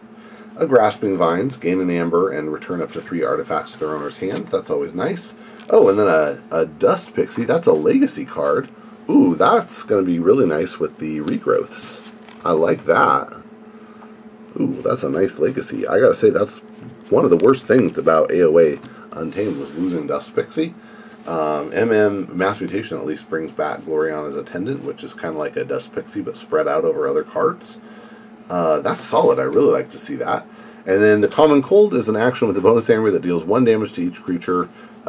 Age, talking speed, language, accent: 40-59, 200 wpm, English, American